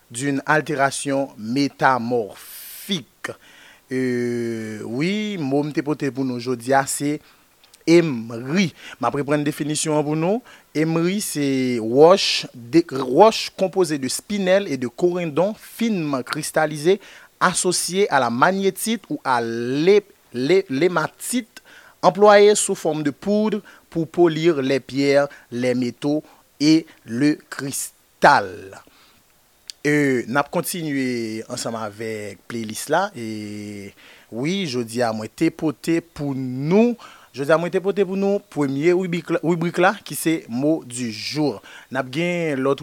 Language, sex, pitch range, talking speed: French, male, 125-175 Hz, 125 wpm